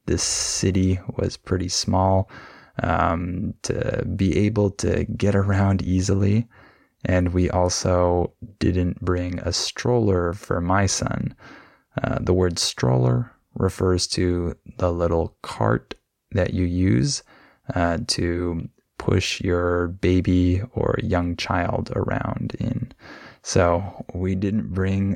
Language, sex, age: Spanish, male, 20-39